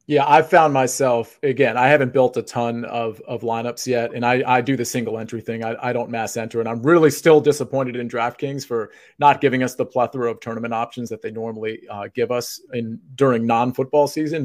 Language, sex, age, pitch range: English, male, 40-59, 120-150 Hz